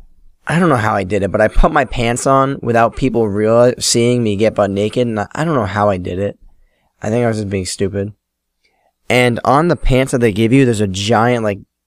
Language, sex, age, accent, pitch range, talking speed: English, male, 10-29, American, 100-120 Hz, 245 wpm